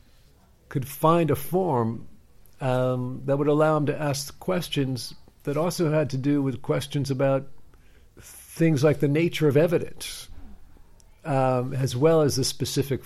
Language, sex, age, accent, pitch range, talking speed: English, male, 50-69, American, 100-140 Hz, 145 wpm